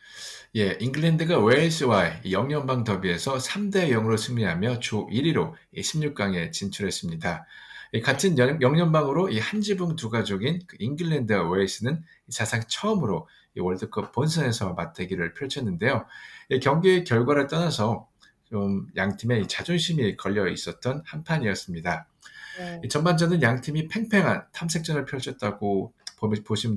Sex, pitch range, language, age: male, 105-165 Hz, Korean, 50-69